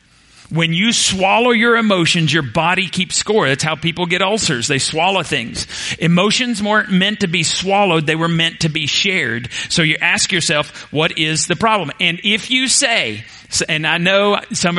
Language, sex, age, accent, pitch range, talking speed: English, male, 40-59, American, 155-190 Hz, 185 wpm